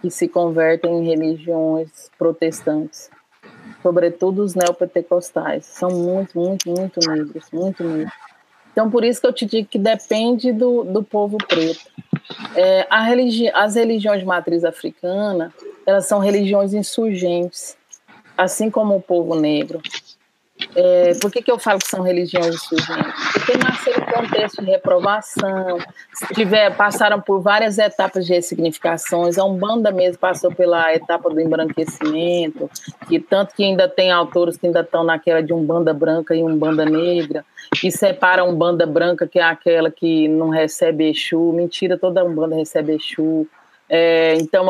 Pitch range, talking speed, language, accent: 165-200 Hz, 150 wpm, Portuguese, Brazilian